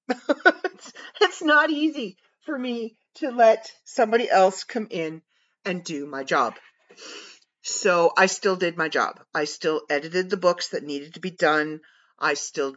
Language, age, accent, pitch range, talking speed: English, 50-69, American, 155-205 Hz, 160 wpm